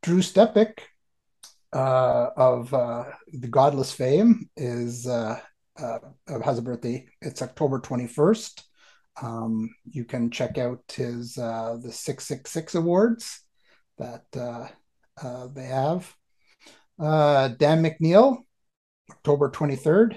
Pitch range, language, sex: 125-165 Hz, English, male